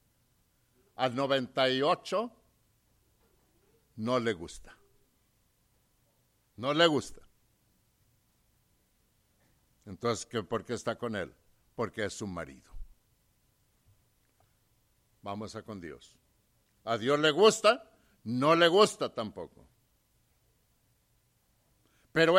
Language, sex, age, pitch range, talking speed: English, male, 60-79, 105-130 Hz, 85 wpm